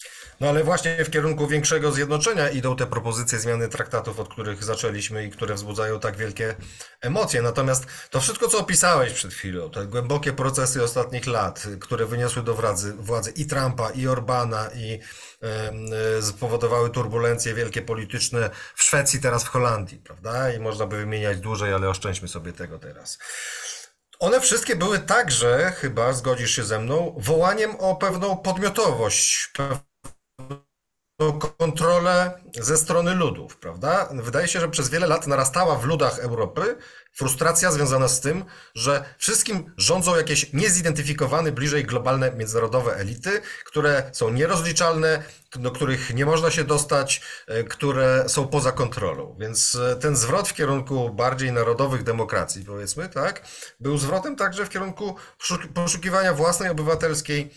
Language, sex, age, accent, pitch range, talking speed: Polish, male, 40-59, native, 115-160 Hz, 140 wpm